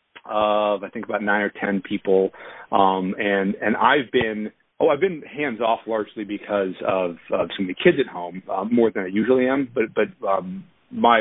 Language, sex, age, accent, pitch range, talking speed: English, male, 40-59, American, 100-125 Hz, 205 wpm